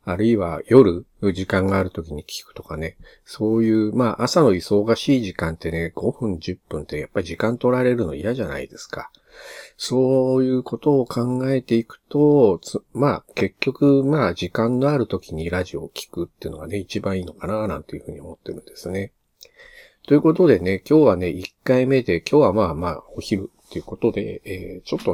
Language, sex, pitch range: Japanese, male, 95-130 Hz